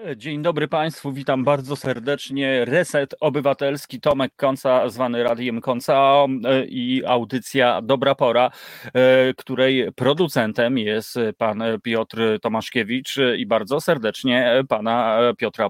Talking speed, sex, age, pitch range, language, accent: 105 wpm, male, 30-49, 120-145 Hz, Polish, native